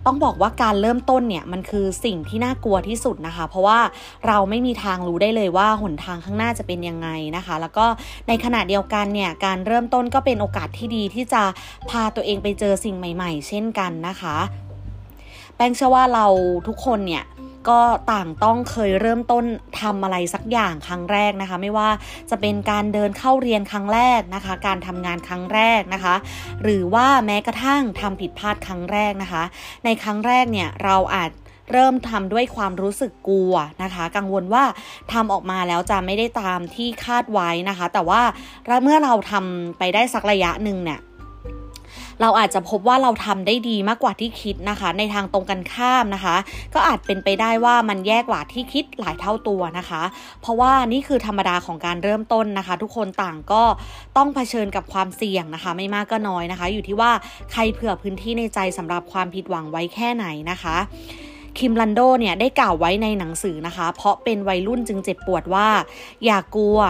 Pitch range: 180-230 Hz